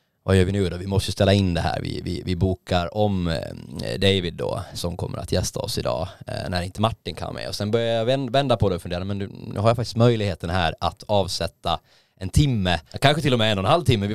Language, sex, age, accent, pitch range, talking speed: Swedish, male, 20-39, native, 90-110 Hz, 255 wpm